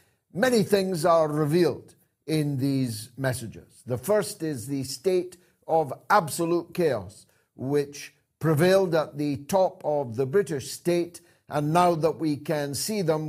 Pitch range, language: 150-195 Hz, English